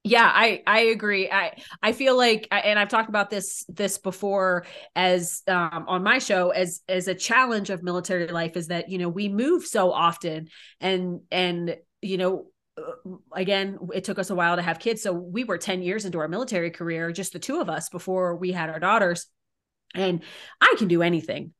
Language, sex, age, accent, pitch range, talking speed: English, female, 30-49, American, 175-205 Hz, 200 wpm